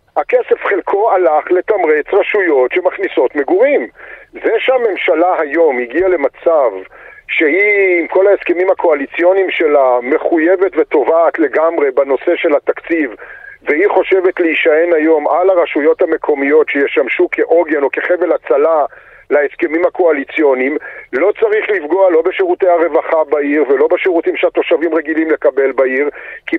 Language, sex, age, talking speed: Hebrew, male, 50-69, 115 wpm